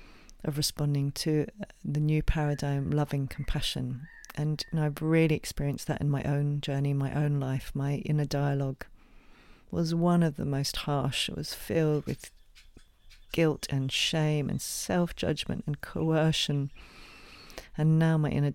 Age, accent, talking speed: 40-59, British, 150 wpm